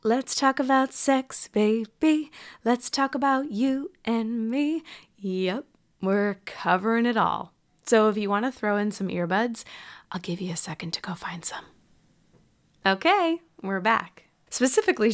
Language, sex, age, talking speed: English, female, 20-39, 145 wpm